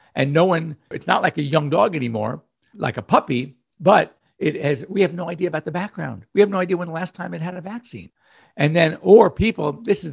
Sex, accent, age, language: male, American, 50-69, English